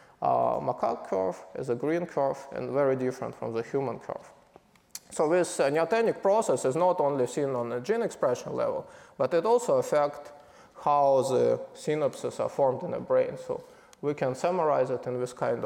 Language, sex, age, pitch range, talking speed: English, male, 20-39, 130-205 Hz, 185 wpm